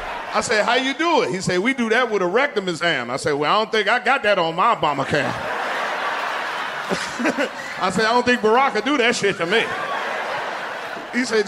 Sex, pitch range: male, 160-200 Hz